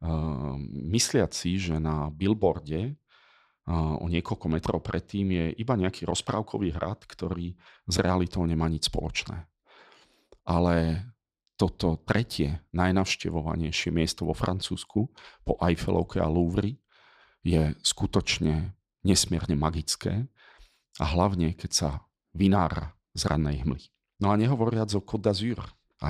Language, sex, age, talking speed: Slovak, male, 40-59, 115 wpm